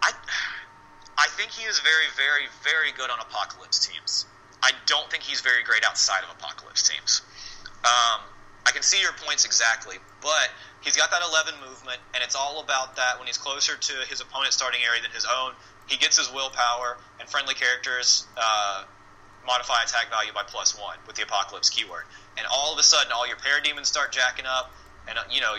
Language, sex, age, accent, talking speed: English, male, 30-49, American, 195 wpm